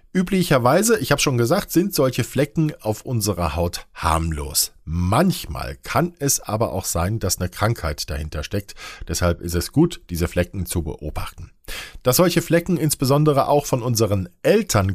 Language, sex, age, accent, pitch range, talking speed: German, male, 50-69, German, 90-135 Hz, 155 wpm